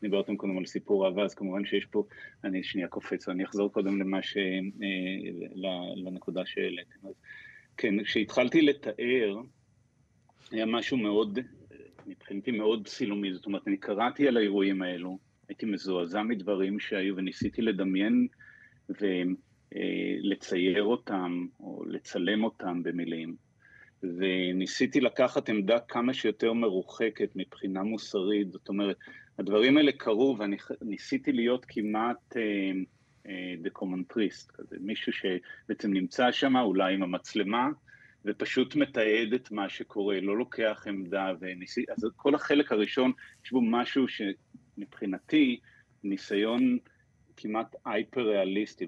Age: 30-49